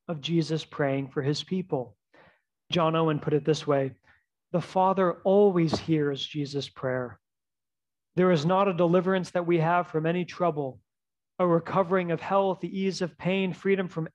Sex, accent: male, American